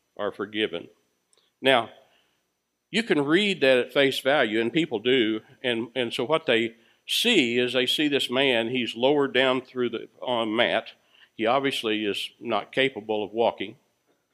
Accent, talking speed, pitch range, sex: American, 160 wpm, 100-145 Hz, male